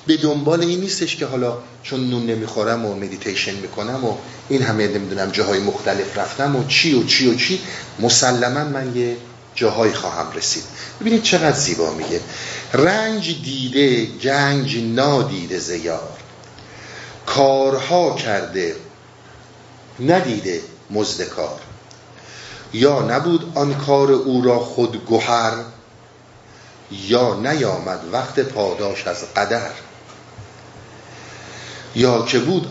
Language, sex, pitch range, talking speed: Persian, male, 115-140 Hz, 110 wpm